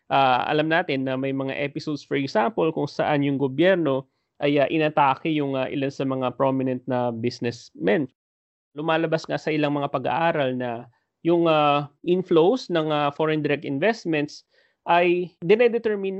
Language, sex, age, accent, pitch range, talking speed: English, male, 30-49, Filipino, 130-160 Hz, 150 wpm